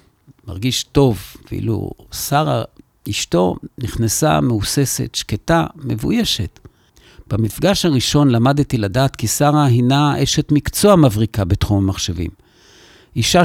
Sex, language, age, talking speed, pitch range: male, Hebrew, 50-69, 100 wpm, 110-140 Hz